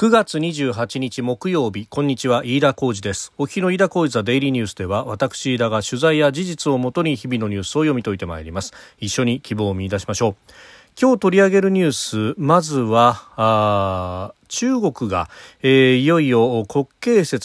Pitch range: 100-150 Hz